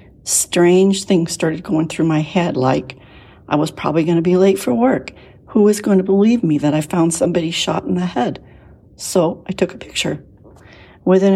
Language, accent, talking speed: English, American, 195 wpm